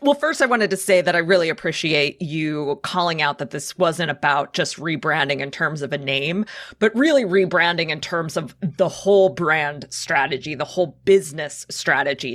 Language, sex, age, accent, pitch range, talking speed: English, female, 30-49, American, 155-215 Hz, 185 wpm